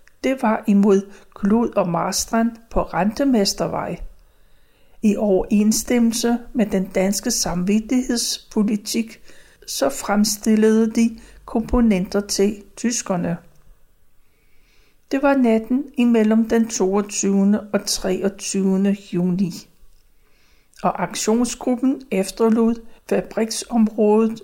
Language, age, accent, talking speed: Danish, 60-79, native, 80 wpm